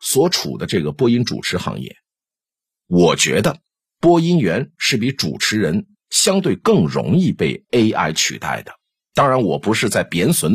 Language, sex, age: Chinese, male, 50-69